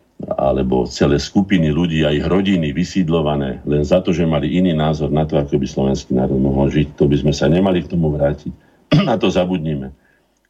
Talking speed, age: 200 wpm, 50-69